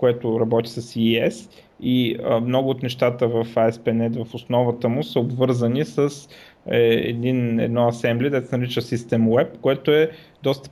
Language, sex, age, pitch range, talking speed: Bulgarian, male, 20-39, 115-145 Hz, 160 wpm